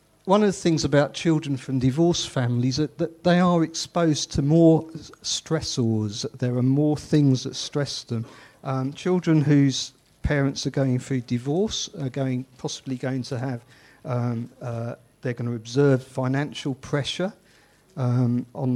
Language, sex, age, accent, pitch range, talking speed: English, male, 50-69, British, 125-155 Hz, 155 wpm